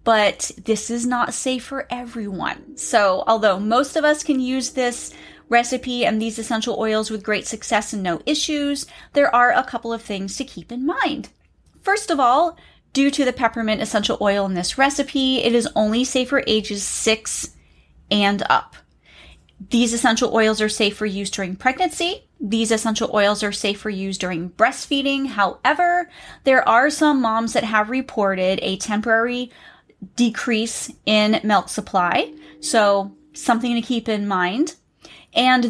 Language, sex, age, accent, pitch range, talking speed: English, female, 30-49, American, 210-265 Hz, 160 wpm